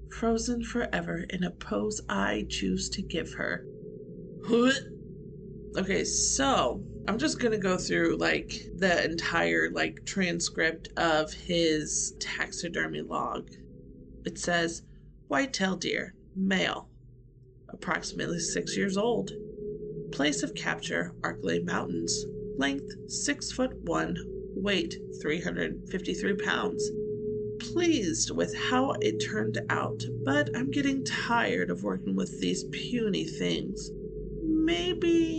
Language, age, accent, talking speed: English, 30-49, American, 110 wpm